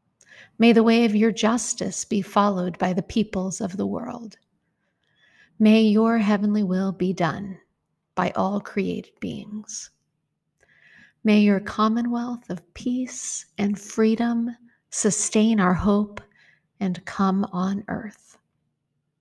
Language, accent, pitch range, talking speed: English, American, 195-230 Hz, 120 wpm